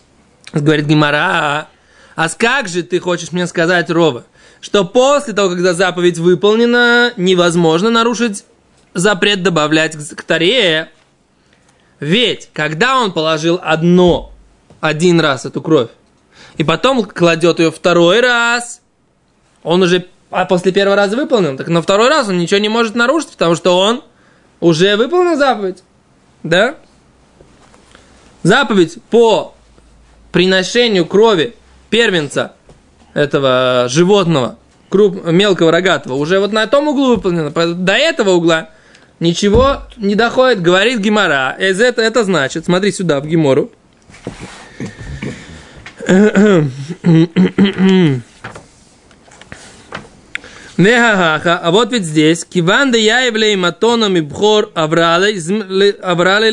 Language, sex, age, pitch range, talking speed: Russian, male, 20-39, 165-220 Hz, 105 wpm